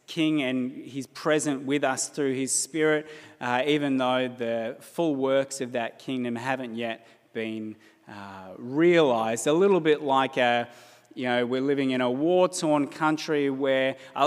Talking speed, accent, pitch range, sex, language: 160 wpm, Australian, 125-150 Hz, male, English